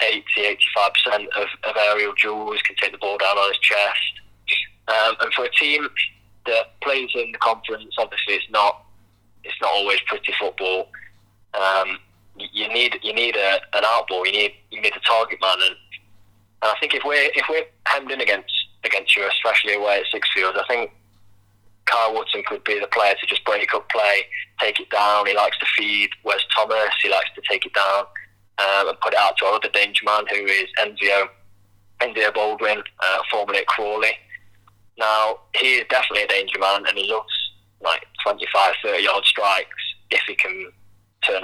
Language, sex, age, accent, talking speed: English, male, 20-39, British, 190 wpm